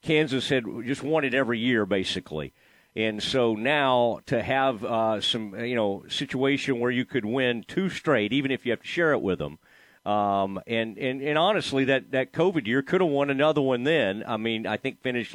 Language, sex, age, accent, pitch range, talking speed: English, male, 40-59, American, 120-160 Hz, 205 wpm